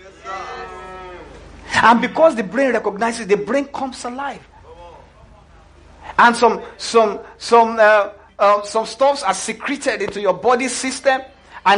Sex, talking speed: male, 120 wpm